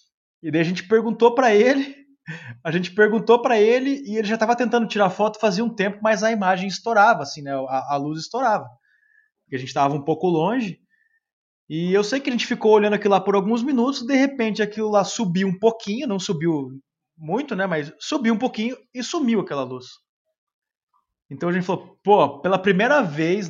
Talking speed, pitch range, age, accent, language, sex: 205 wpm, 165-235 Hz, 20-39, Brazilian, Portuguese, male